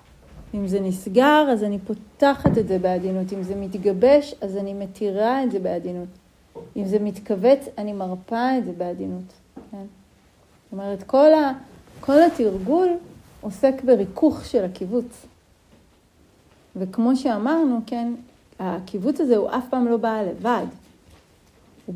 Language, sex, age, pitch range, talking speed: Hebrew, female, 40-59, 190-245 Hz, 135 wpm